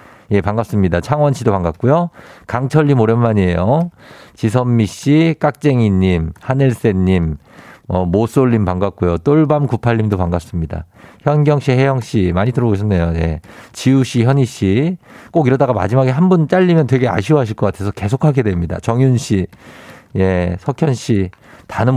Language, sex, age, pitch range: Korean, male, 50-69, 105-165 Hz